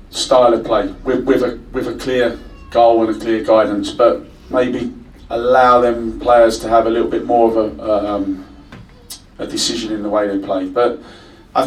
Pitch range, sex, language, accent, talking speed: 110-135 Hz, male, English, British, 190 wpm